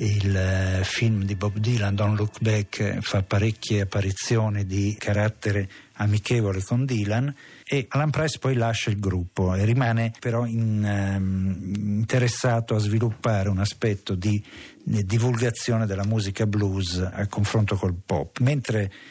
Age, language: 50-69, Italian